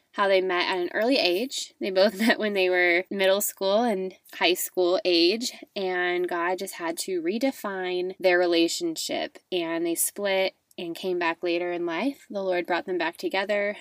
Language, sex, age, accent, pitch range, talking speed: English, female, 20-39, American, 180-250 Hz, 185 wpm